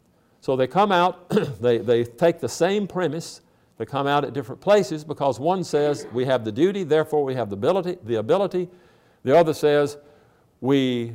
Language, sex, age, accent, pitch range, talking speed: English, male, 50-69, American, 125-170 Hz, 180 wpm